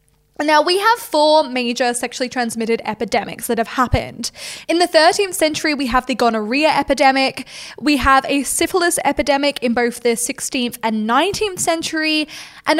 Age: 10-29